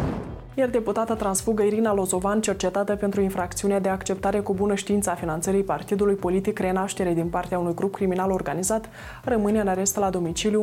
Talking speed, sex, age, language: 165 wpm, female, 20-39, Romanian